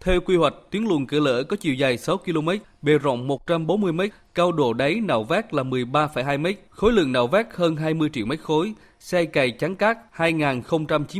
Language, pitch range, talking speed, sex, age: Vietnamese, 140-175 Hz, 210 wpm, male, 20-39